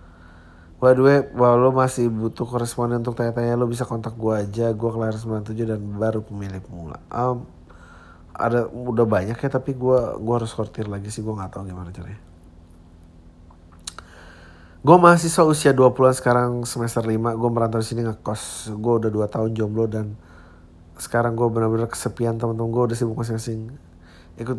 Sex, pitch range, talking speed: male, 85-120 Hz, 160 wpm